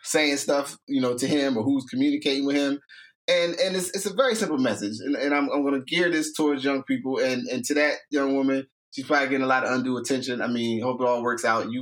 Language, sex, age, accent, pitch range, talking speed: English, male, 20-39, American, 115-145 Hz, 265 wpm